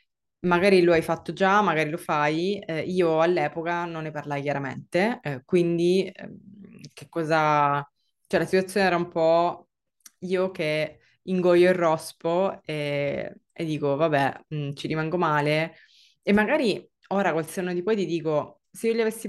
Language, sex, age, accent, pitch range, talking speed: Italian, female, 20-39, native, 150-185 Hz, 160 wpm